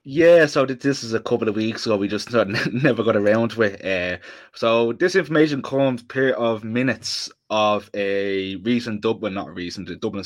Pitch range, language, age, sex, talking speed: 100-125 Hz, English, 20-39, male, 185 wpm